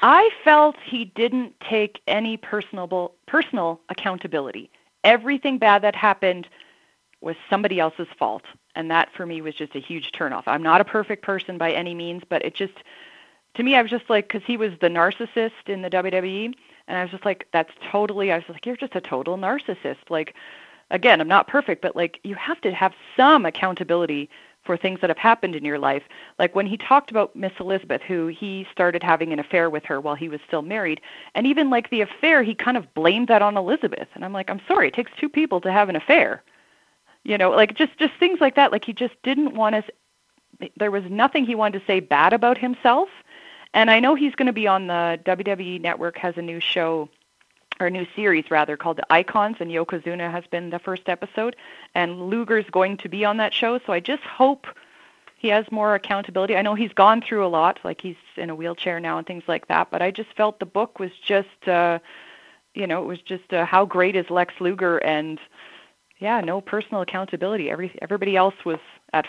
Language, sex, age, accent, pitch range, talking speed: English, female, 30-49, American, 175-225 Hz, 215 wpm